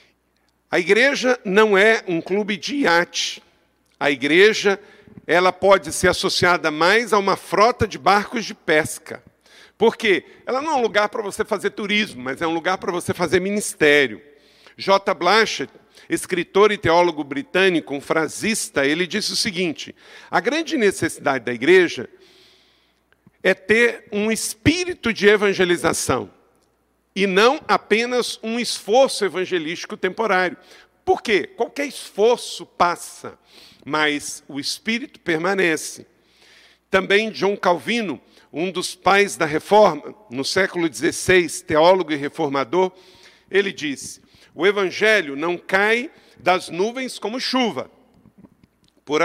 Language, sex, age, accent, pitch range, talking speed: Portuguese, male, 50-69, Brazilian, 165-220 Hz, 125 wpm